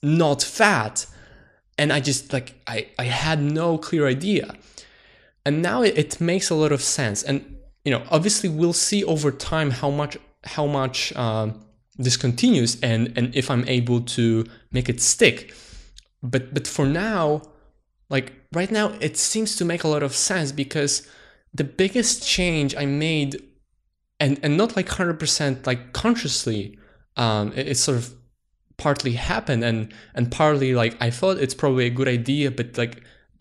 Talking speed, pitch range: 165 wpm, 125-160 Hz